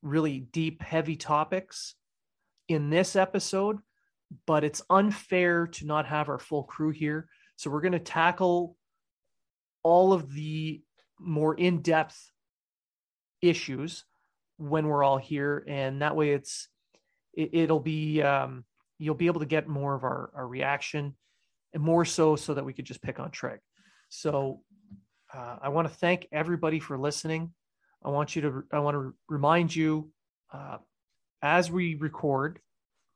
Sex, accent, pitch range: male, American, 140-170 Hz